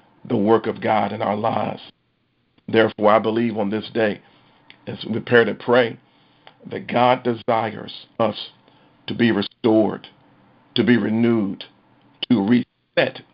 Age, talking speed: 50-69, 135 wpm